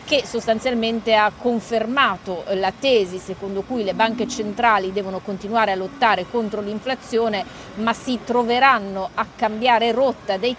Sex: female